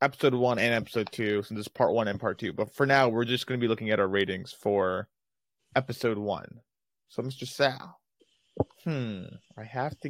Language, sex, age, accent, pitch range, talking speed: English, male, 20-39, American, 110-135 Hz, 200 wpm